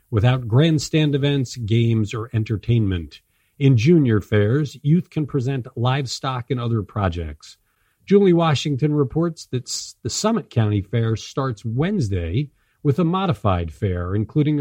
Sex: male